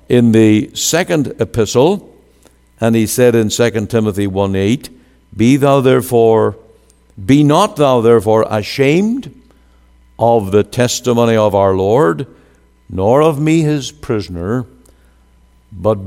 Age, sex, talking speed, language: 60-79, male, 120 wpm, English